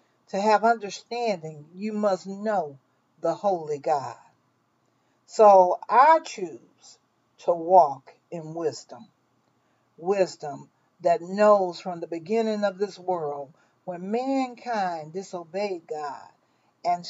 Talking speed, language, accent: 105 wpm, English, American